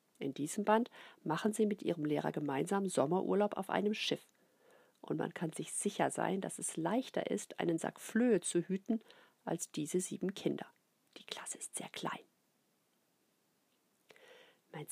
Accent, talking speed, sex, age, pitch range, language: German, 155 wpm, female, 50-69, 175-225 Hz, German